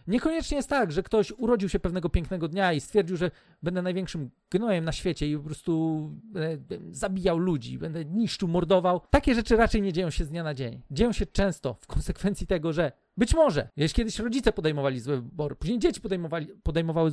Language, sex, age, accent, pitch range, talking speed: Polish, male, 40-59, native, 145-190 Hz, 195 wpm